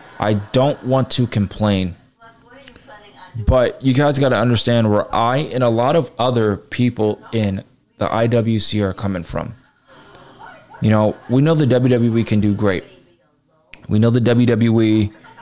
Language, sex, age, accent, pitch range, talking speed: English, male, 20-39, American, 105-130 Hz, 150 wpm